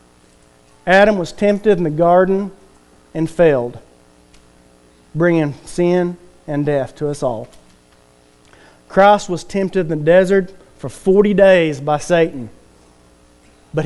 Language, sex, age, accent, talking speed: English, male, 40-59, American, 115 wpm